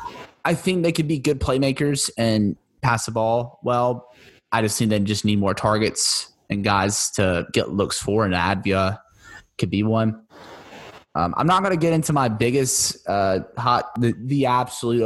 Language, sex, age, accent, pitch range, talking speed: English, male, 20-39, American, 105-125 Hz, 180 wpm